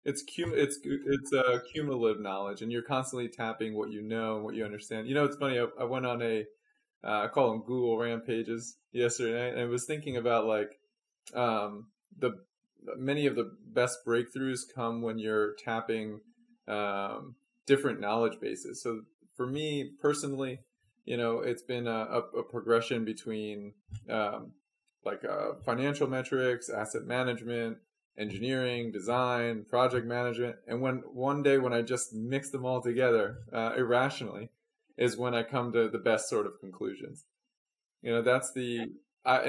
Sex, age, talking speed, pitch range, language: male, 20-39, 160 wpm, 115-135 Hz, English